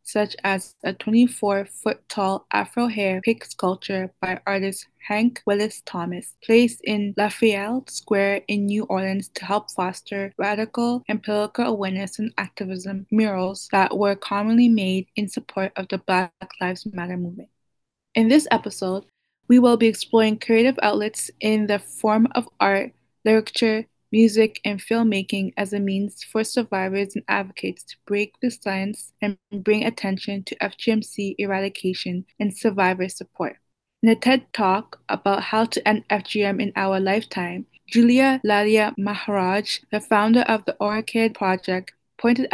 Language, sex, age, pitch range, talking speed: English, female, 20-39, 195-225 Hz, 140 wpm